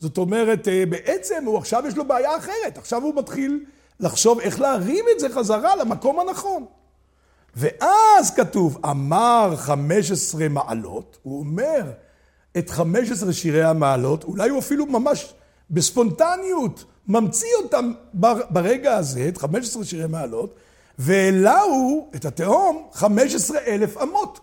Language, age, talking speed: Hebrew, 60-79, 135 wpm